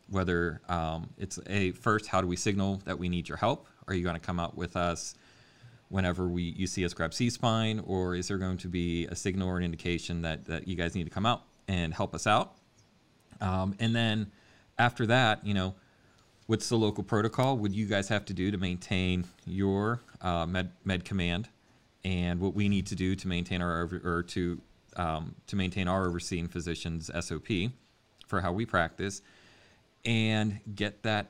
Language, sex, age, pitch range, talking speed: English, male, 30-49, 85-105 Hz, 200 wpm